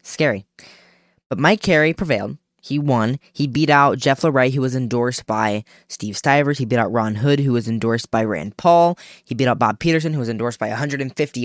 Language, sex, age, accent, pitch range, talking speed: English, female, 10-29, American, 120-170 Hz, 205 wpm